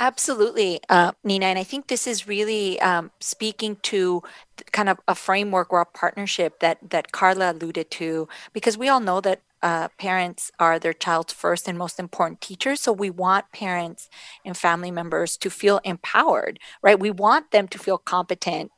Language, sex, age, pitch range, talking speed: English, female, 40-59, 175-210 Hz, 180 wpm